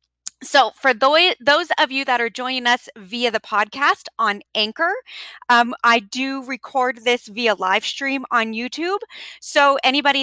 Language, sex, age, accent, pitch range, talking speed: English, female, 30-49, American, 225-280 Hz, 155 wpm